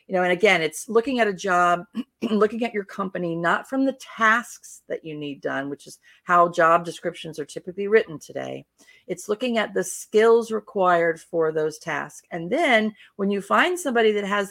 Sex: female